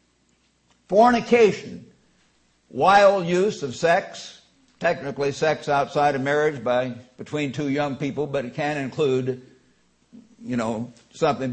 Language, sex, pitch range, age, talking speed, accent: English, male, 125-155 Hz, 60-79, 115 wpm, American